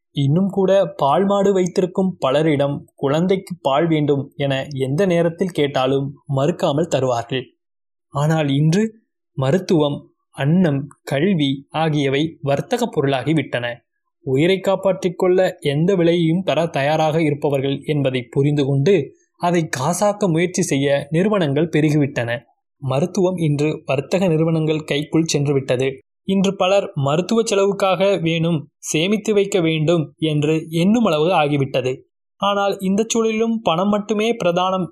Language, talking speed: Tamil, 105 wpm